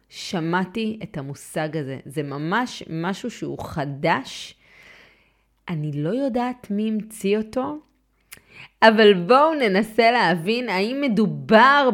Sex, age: female, 30-49